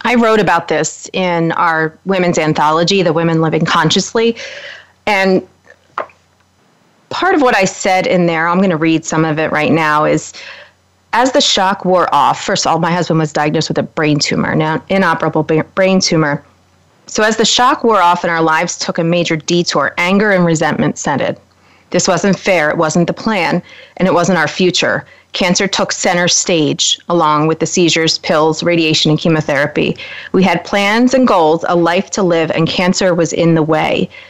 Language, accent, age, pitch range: English, American, 30-49, 165-195 Hz